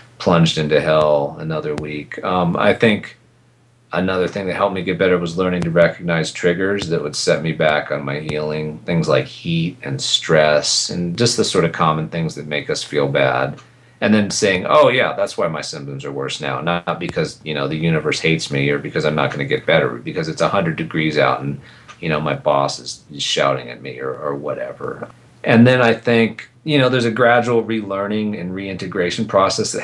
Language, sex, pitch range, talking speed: English, male, 80-110 Hz, 210 wpm